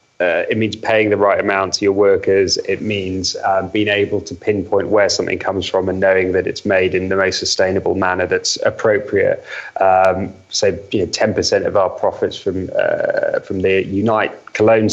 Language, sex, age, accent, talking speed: English, male, 20-39, British, 190 wpm